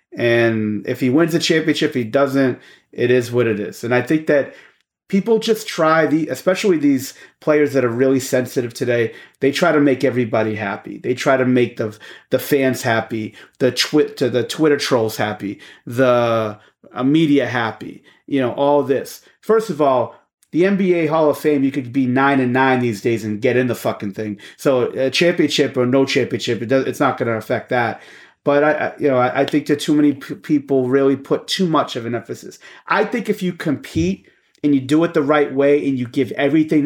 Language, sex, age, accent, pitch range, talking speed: English, male, 30-49, American, 125-155 Hz, 210 wpm